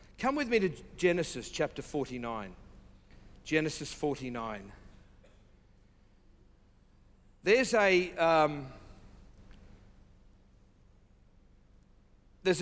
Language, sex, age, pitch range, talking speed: English, male, 50-69, 130-185 Hz, 60 wpm